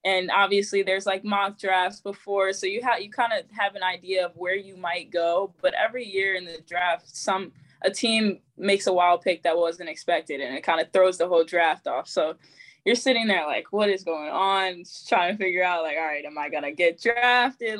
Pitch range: 165-195 Hz